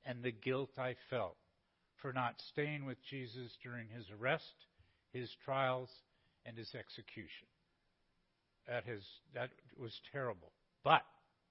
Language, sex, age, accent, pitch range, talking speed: English, male, 50-69, American, 135-175 Hz, 120 wpm